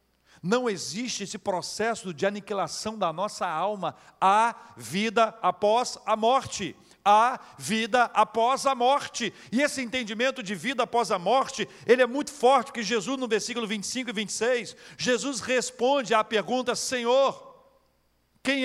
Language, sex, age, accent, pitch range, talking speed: Portuguese, male, 50-69, Brazilian, 165-250 Hz, 140 wpm